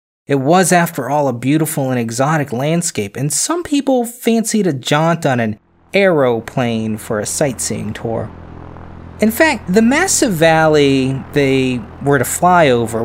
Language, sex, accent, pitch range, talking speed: English, male, American, 120-175 Hz, 145 wpm